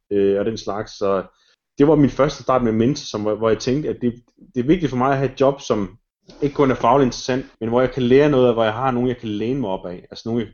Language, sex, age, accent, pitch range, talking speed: Danish, male, 30-49, native, 100-130 Hz, 305 wpm